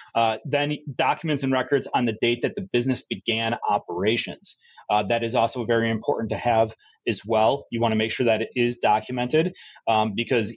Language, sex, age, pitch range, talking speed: English, male, 30-49, 115-140 Hz, 195 wpm